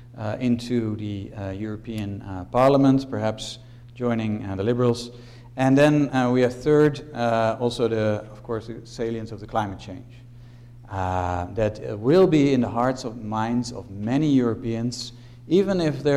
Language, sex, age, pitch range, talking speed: English, male, 50-69, 110-125 Hz, 165 wpm